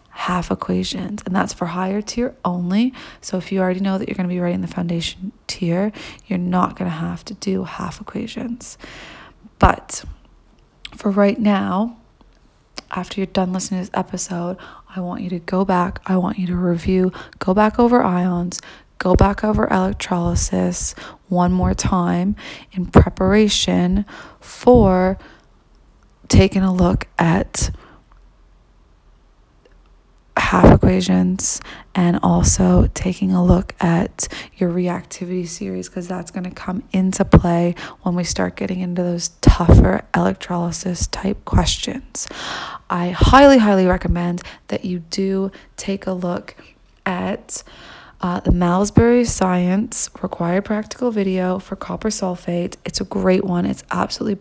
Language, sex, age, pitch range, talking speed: English, female, 20-39, 175-195 Hz, 140 wpm